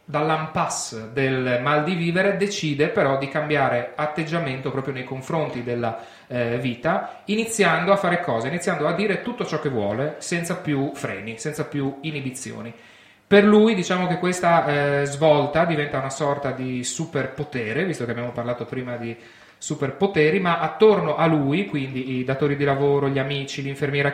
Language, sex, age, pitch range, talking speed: Italian, male, 30-49, 130-160 Hz, 160 wpm